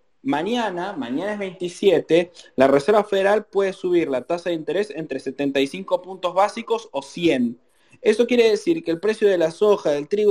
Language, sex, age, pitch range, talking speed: Spanish, male, 30-49, 155-210 Hz, 175 wpm